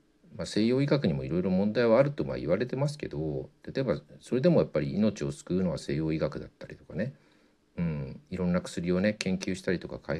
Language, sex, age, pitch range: Japanese, male, 50-69, 75-120 Hz